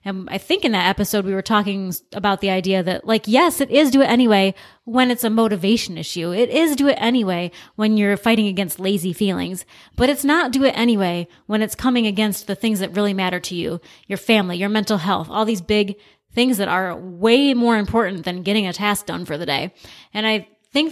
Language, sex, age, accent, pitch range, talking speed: English, female, 20-39, American, 195-235 Hz, 225 wpm